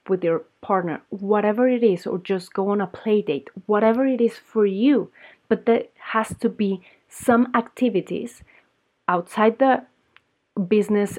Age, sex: 30-49, female